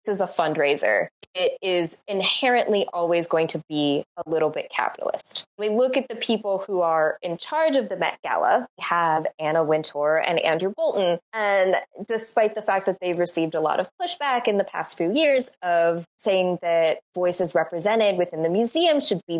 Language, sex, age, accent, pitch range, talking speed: English, female, 20-39, American, 170-225 Hz, 185 wpm